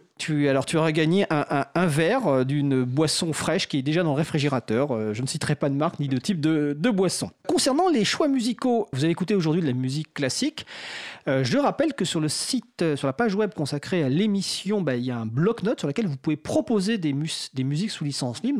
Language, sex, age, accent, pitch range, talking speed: French, male, 40-59, French, 135-200 Hz, 240 wpm